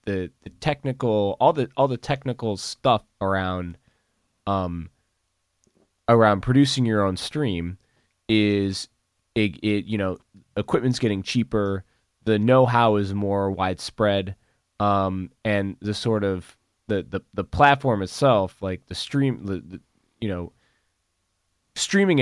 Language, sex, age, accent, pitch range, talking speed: English, male, 20-39, American, 90-115 Hz, 125 wpm